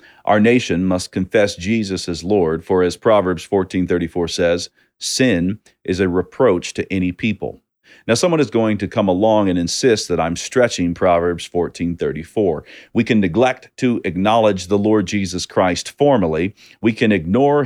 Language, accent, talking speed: English, American, 155 wpm